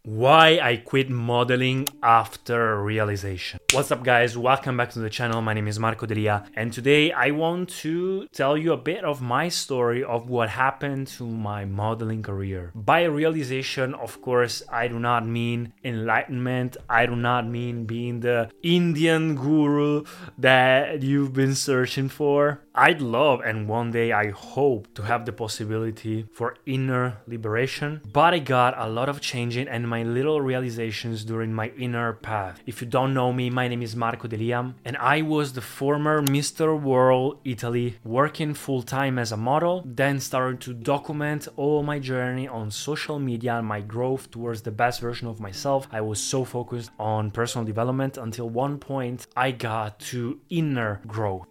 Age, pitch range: 20-39, 115-135 Hz